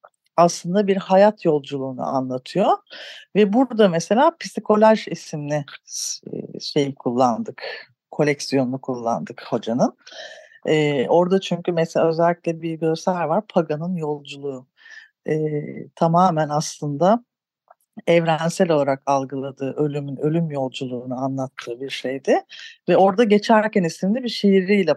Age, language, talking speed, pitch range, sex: 50-69, Turkish, 105 wpm, 145-205 Hz, female